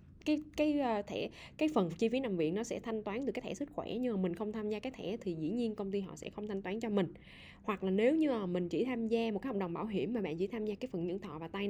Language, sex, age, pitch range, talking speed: Vietnamese, female, 10-29, 175-230 Hz, 330 wpm